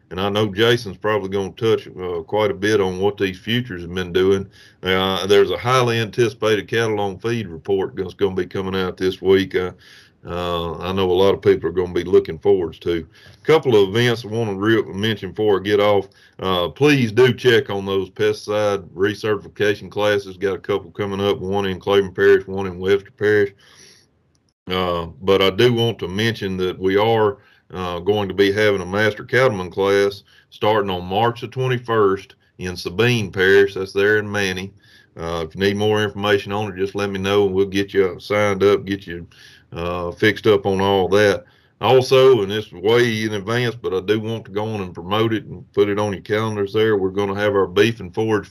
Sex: male